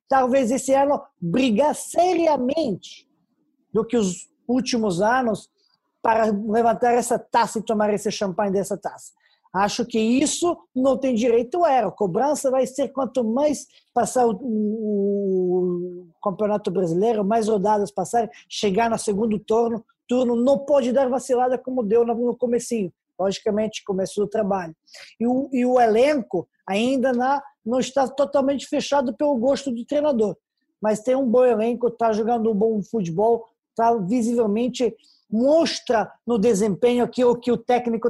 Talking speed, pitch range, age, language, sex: 150 wpm, 210-255 Hz, 20-39, Portuguese, male